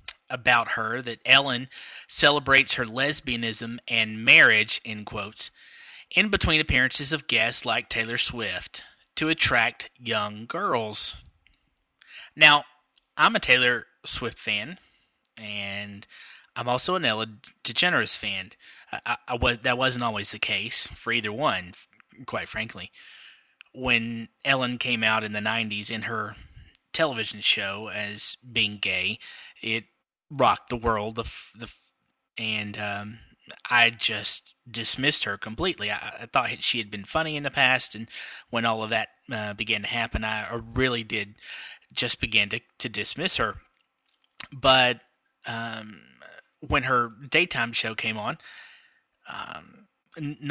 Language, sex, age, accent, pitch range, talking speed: English, male, 20-39, American, 110-135 Hz, 135 wpm